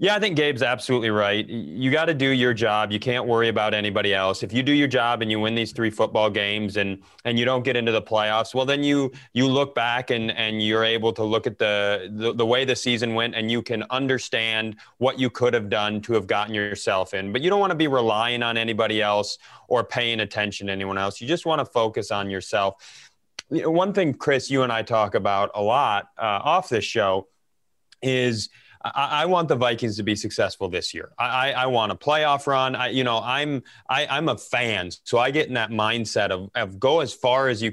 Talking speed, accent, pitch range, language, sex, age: 235 wpm, American, 105-130 Hz, English, male, 30-49